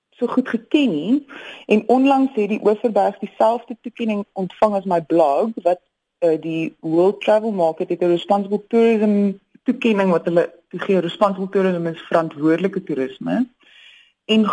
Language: English